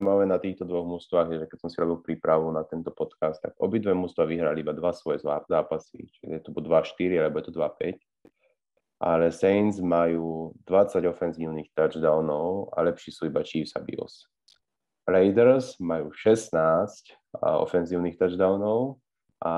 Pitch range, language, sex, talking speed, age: 80-100 Hz, Slovak, male, 145 wpm, 20-39